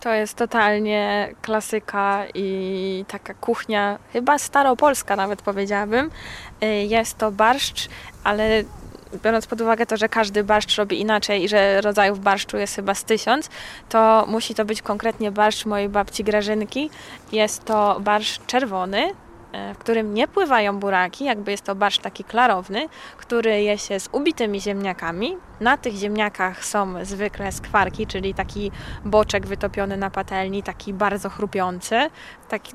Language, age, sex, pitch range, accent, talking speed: Polish, 20-39, female, 195-220 Hz, native, 145 wpm